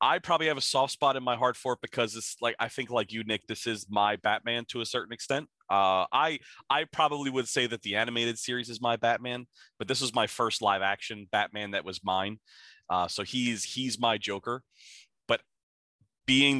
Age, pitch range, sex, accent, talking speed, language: 30-49, 105-125 Hz, male, American, 215 wpm, English